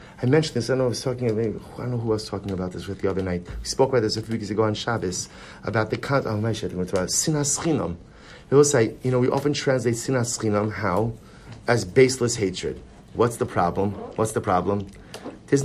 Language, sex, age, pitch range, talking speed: English, male, 30-49, 110-140 Hz, 220 wpm